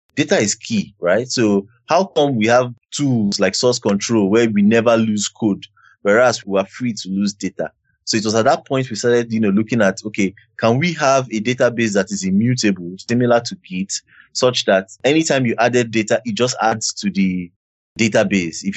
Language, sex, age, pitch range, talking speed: English, male, 30-49, 100-125 Hz, 200 wpm